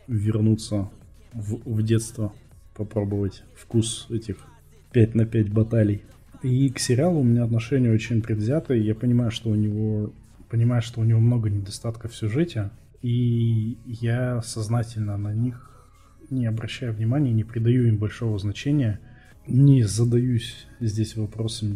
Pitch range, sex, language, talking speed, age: 105-120 Hz, male, Russian, 135 wpm, 20-39